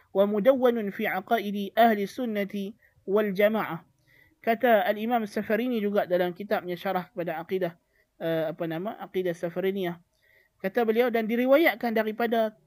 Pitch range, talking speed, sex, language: 180-220 Hz, 110 wpm, male, Malay